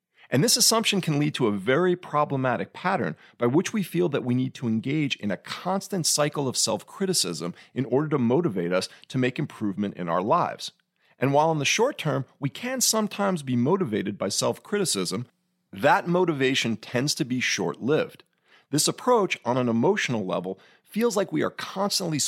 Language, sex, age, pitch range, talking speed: English, male, 40-59, 120-180 Hz, 180 wpm